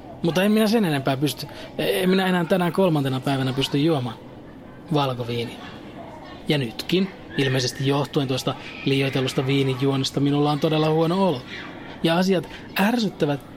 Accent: native